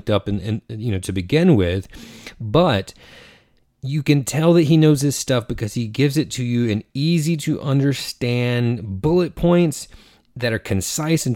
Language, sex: English, male